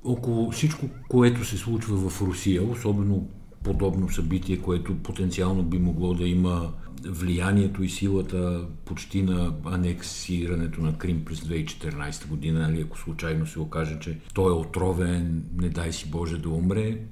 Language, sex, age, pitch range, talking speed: Bulgarian, male, 50-69, 85-100 Hz, 145 wpm